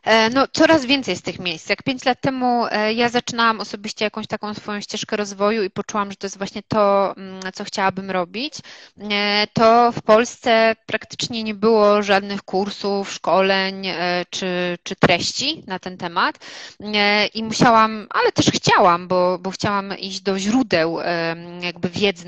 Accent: native